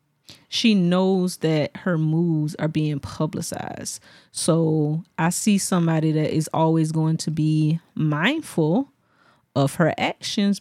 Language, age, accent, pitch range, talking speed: English, 30-49, American, 160-205 Hz, 125 wpm